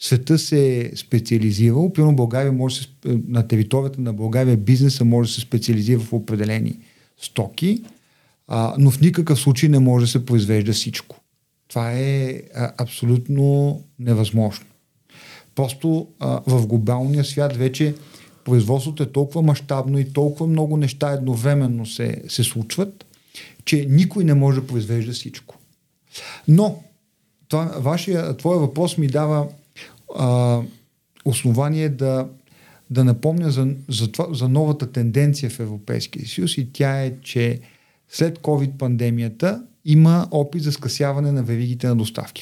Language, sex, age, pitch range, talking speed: Bulgarian, male, 50-69, 125-155 Hz, 130 wpm